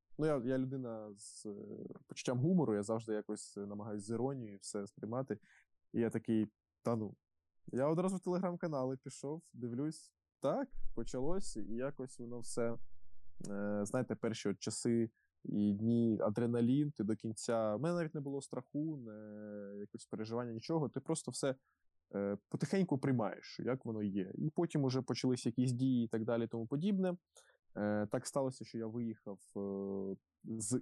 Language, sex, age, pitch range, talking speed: Ukrainian, male, 20-39, 105-130 Hz, 160 wpm